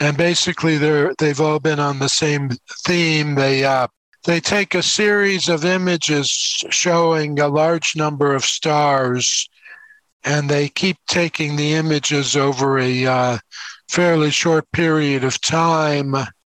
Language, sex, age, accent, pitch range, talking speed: English, male, 60-79, American, 140-165 Hz, 135 wpm